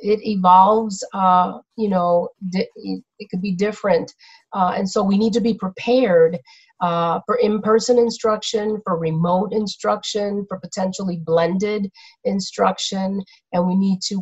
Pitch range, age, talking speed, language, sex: 175-210 Hz, 40-59, 135 wpm, English, female